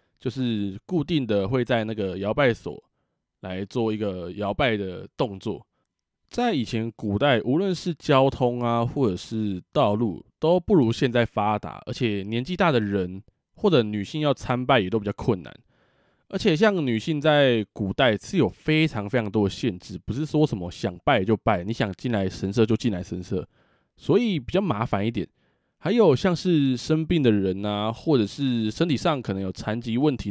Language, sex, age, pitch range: Chinese, male, 20-39, 100-145 Hz